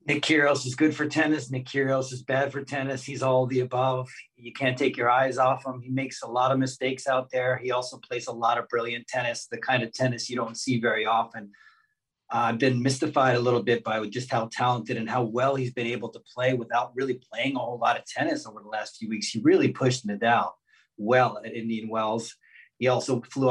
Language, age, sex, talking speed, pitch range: English, 30-49, male, 230 wpm, 120-140 Hz